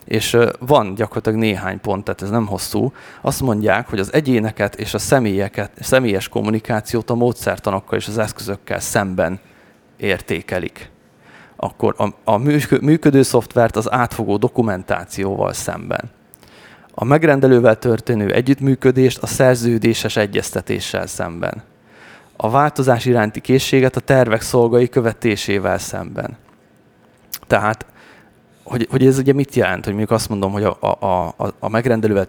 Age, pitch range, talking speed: 30-49, 100-120 Hz, 130 wpm